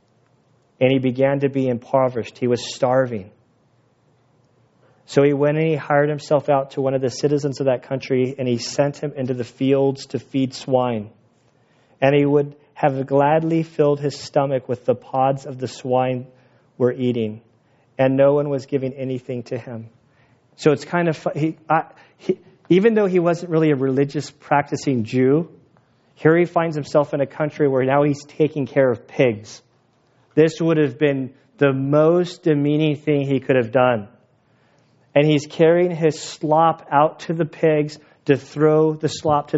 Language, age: English, 40-59